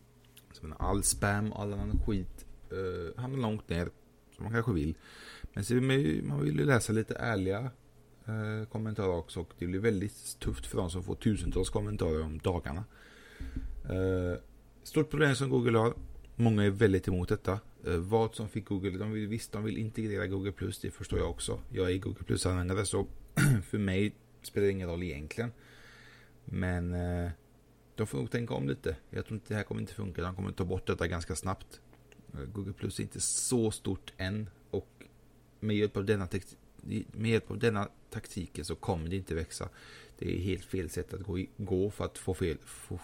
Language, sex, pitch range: English, male, 90-110 Hz